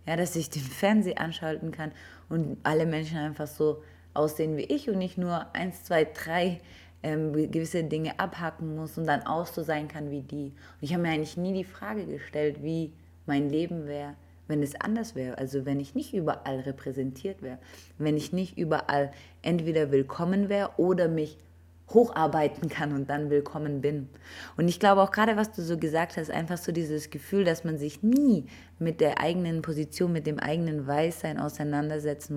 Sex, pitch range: female, 145-170 Hz